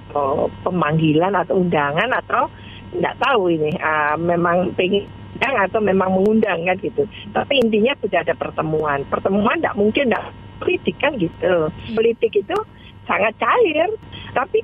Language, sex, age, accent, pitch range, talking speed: Indonesian, female, 40-59, native, 185-240 Hz, 130 wpm